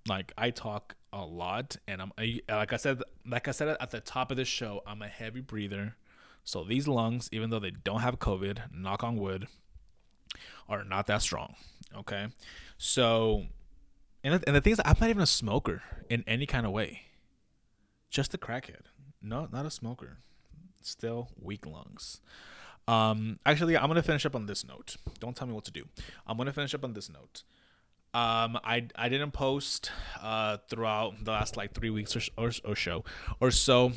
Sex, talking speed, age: male, 190 wpm, 20-39